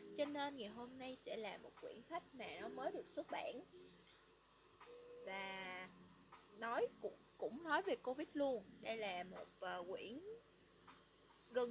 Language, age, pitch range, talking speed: Vietnamese, 20-39, 215-325 Hz, 155 wpm